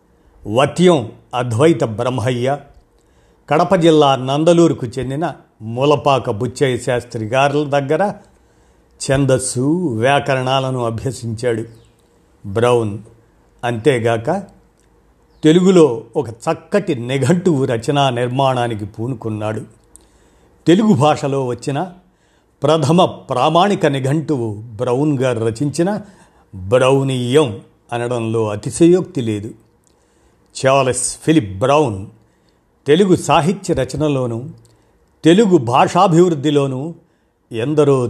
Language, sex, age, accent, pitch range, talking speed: Telugu, male, 50-69, native, 115-155 Hz, 70 wpm